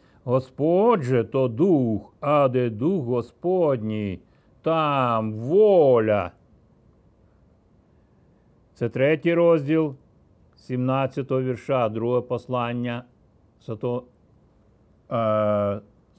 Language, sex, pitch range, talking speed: Ukrainian, male, 120-160 Hz, 65 wpm